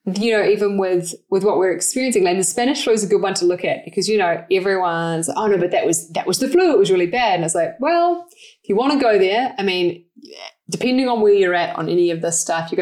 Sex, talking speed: female, 275 wpm